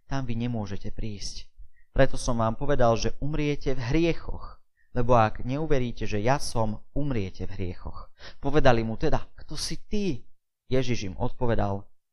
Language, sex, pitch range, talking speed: Slovak, male, 105-135 Hz, 150 wpm